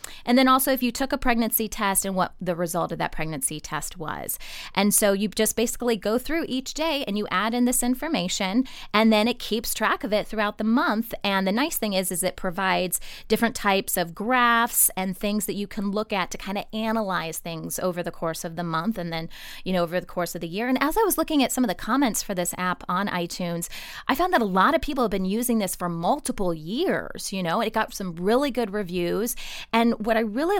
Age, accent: 20-39, American